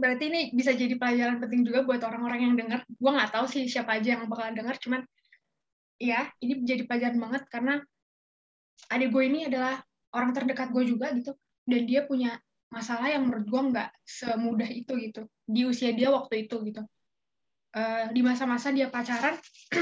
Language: Indonesian